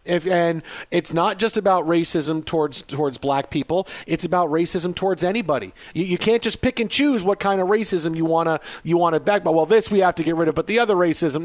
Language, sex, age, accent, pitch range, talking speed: English, male, 40-59, American, 165-220 Hz, 240 wpm